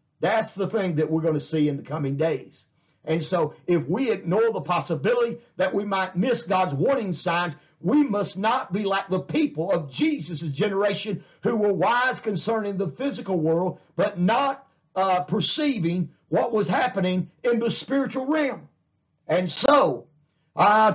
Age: 50-69